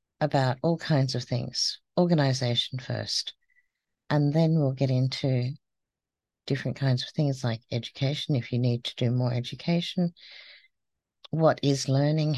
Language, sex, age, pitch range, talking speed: English, female, 50-69, 125-165 Hz, 135 wpm